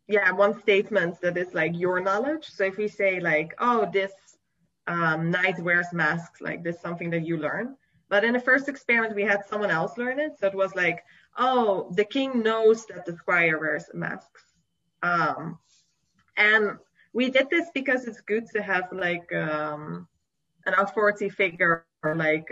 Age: 20-39